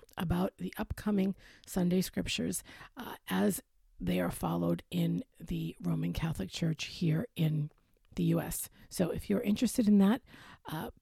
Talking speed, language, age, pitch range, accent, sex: 140 wpm, English, 50-69, 135-195 Hz, American, female